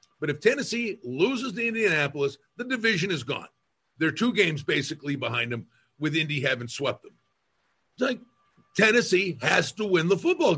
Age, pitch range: 50-69, 150-230 Hz